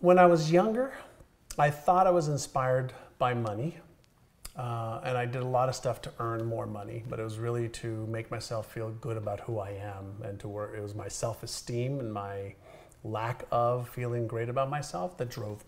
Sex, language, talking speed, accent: male, English, 200 wpm, American